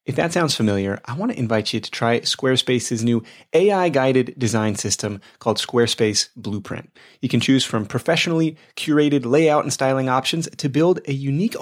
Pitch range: 115-160 Hz